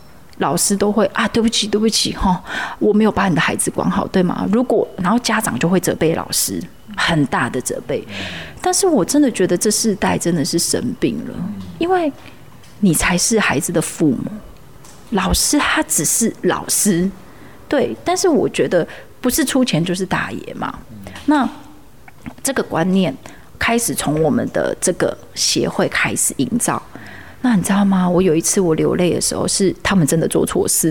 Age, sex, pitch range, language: 30-49, female, 185-235 Hz, Chinese